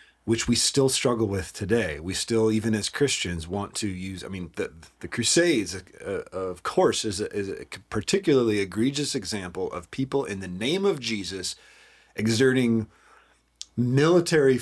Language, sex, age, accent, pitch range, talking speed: English, male, 30-49, American, 90-120 Hz, 155 wpm